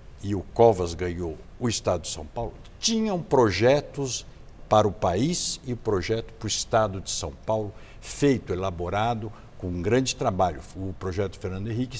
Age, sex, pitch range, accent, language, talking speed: 60-79, male, 95-130 Hz, Brazilian, English, 165 wpm